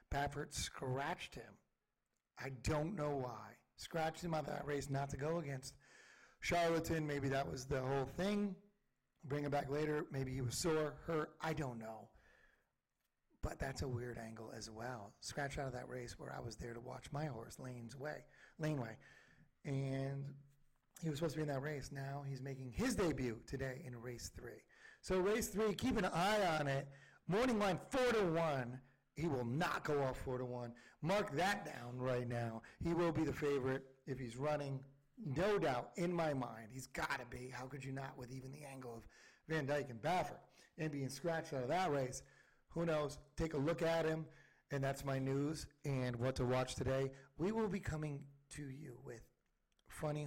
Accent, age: American, 40-59